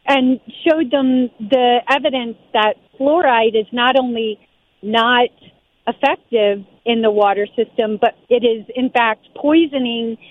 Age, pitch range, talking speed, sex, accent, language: 40-59, 225-275 Hz, 130 wpm, female, American, English